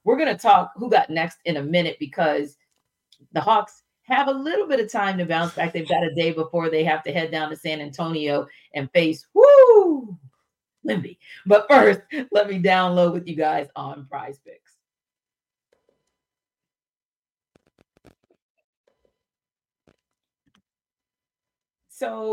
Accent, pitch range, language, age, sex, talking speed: American, 160-235 Hz, English, 40-59, female, 135 wpm